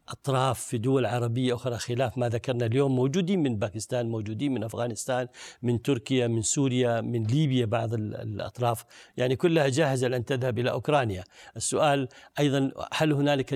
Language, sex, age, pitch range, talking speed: Arabic, male, 60-79, 120-150 Hz, 150 wpm